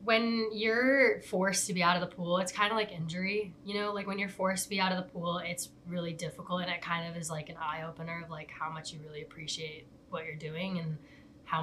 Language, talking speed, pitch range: English, 260 wpm, 155-180 Hz